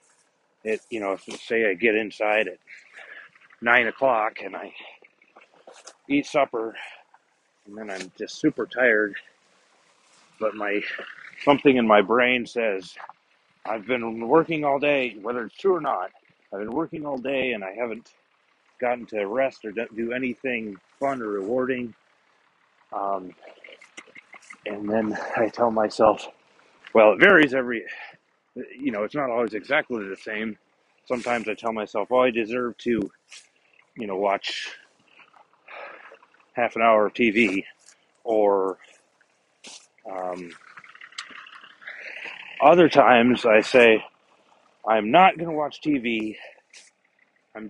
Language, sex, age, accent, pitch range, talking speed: English, male, 30-49, American, 110-130 Hz, 125 wpm